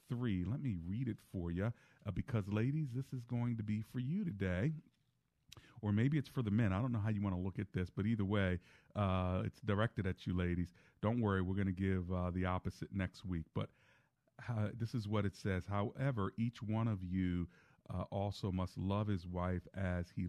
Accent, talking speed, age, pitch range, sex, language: American, 220 wpm, 40-59, 95-130 Hz, male, English